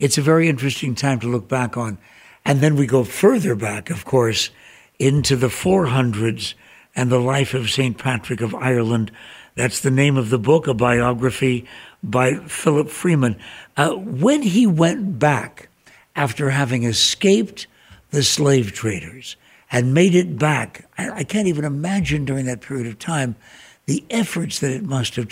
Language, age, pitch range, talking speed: English, 60-79, 125-160 Hz, 165 wpm